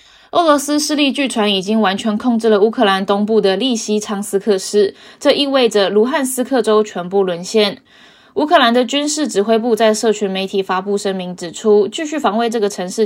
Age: 10-29